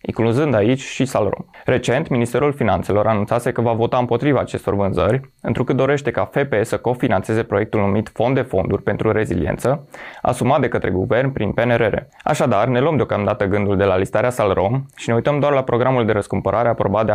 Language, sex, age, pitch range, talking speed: Romanian, male, 20-39, 100-125 Hz, 180 wpm